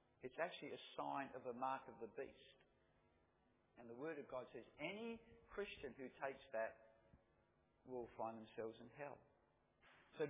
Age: 50-69